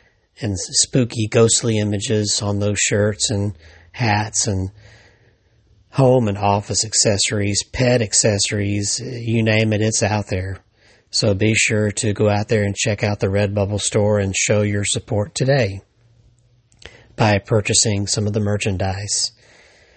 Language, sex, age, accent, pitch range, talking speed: English, male, 40-59, American, 100-115 Hz, 140 wpm